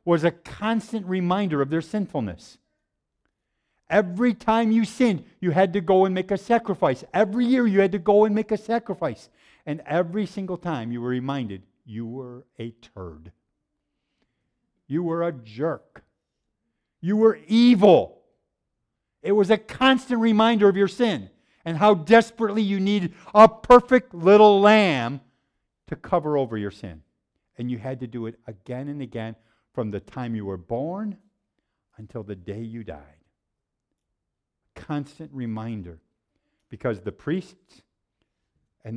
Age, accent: 50-69, American